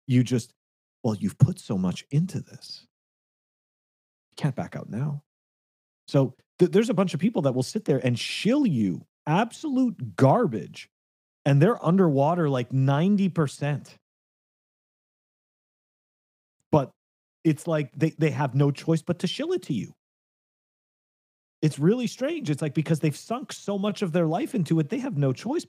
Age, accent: 30-49, American